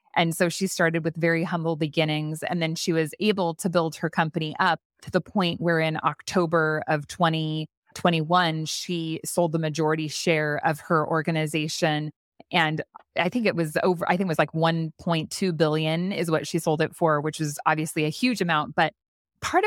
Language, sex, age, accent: English, female, 20-39, American